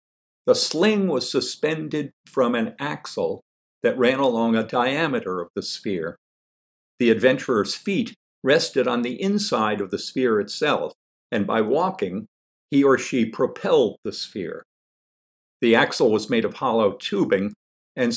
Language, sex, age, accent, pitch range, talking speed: English, male, 50-69, American, 95-155 Hz, 140 wpm